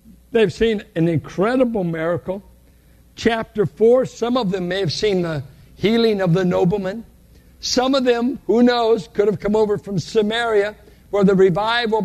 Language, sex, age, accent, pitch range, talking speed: English, male, 60-79, American, 170-235 Hz, 160 wpm